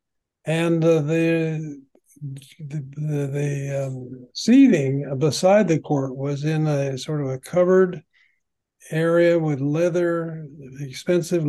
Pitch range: 140-165 Hz